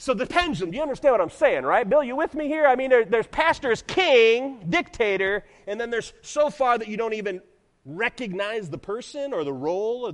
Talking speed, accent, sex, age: 220 wpm, American, male, 40-59